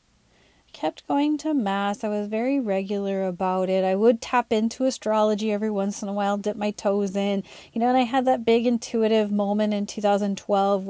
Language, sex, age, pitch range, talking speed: English, female, 30-49, 190-220 Hz, 195 wpm